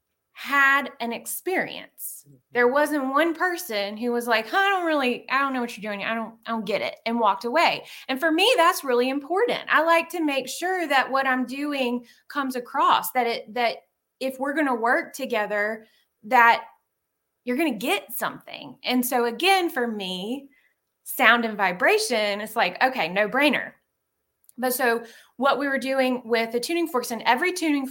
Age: 20-39